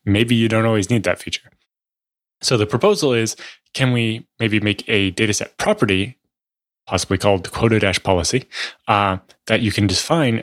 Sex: male